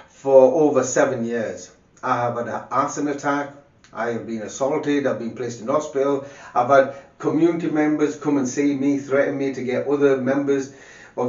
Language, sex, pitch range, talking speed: English, male, 125-155 Hz, 180 wpm